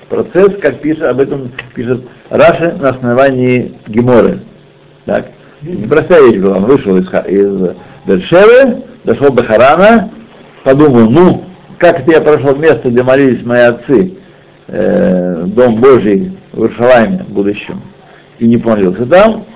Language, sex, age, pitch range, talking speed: Russian, male, 60-79, 120-180 Hz, 135 wpm